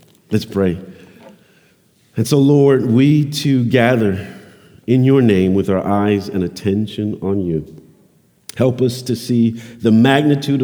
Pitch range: 110-145 Hz